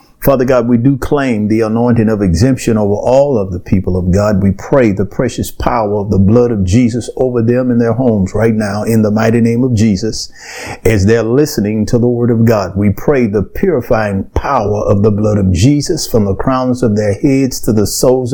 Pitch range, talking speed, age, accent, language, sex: 105-130 Hz, 215 wpm, 50-69, American, English, male